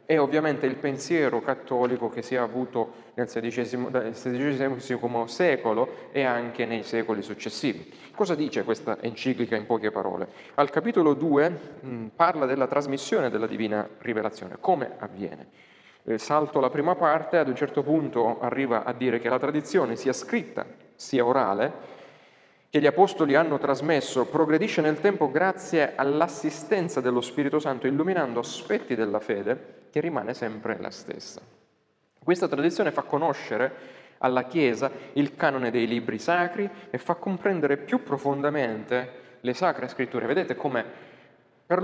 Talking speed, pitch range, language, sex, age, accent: 140 wpm, 125-165 Hz, Italian, male, 30-49, native